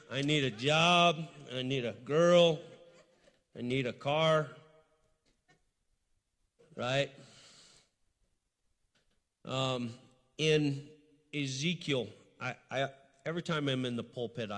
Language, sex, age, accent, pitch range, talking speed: English, male, 50-69, American, 125-165 Hz, 100 wpm